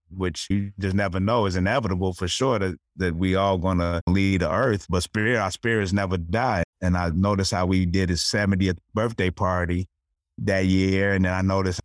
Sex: male